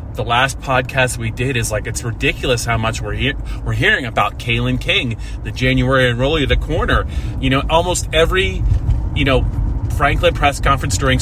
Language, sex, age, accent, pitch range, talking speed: English, male, 30-49, American, 105-130 Hz, 180 wpm